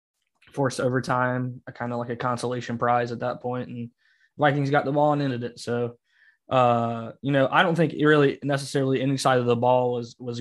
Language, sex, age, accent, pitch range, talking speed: English, male, 20-39, American, 120-135 Hz, 215 wpm